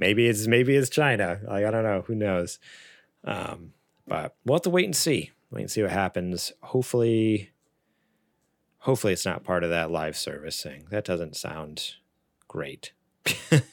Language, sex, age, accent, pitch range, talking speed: English, male, 30-49, American, 105-145 Hz, 160 wpm